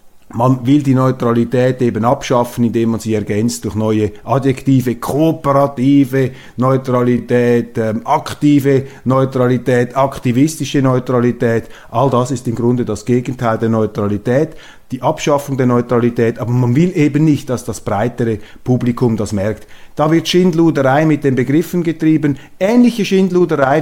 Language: German